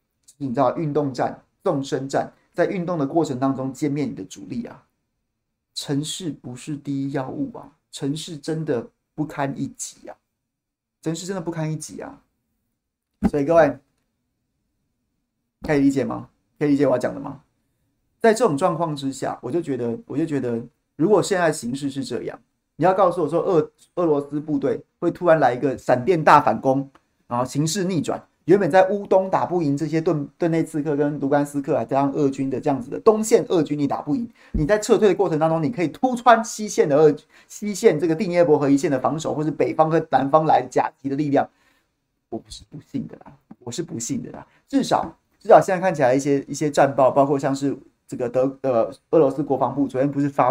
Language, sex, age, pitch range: Chinese, male, 30-49, 135-165 Hz